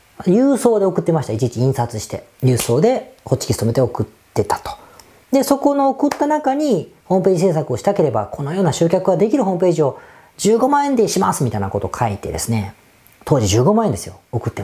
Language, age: Japanese, 40-59